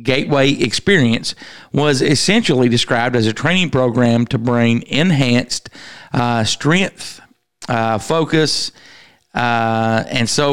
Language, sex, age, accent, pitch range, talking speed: English, male, 40-59, American, 120-145 Hz, 110 wpm